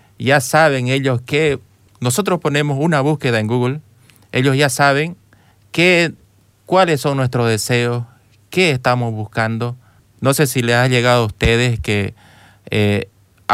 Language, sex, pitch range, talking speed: Spanish, male, 110-140 Hz, 135 wpm